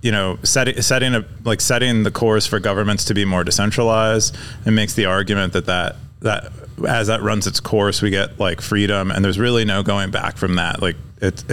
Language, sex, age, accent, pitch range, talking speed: English, male, 30-49, American, 100-120 Hz, 215 wpm